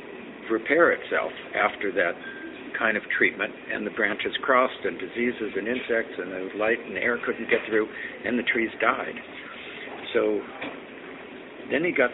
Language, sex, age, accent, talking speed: English, male, 60-79, American, 155 wpm